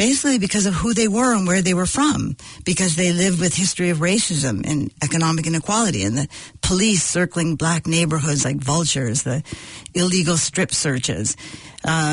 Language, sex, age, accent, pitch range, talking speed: English, female, 50-69, American, 155-190 Hz, 170 wpm